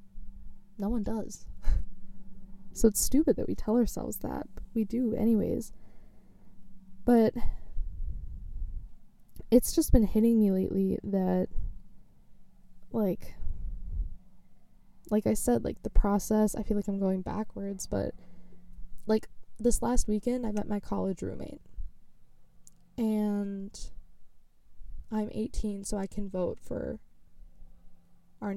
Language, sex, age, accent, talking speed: English, female, 10-29, American, 115 wpm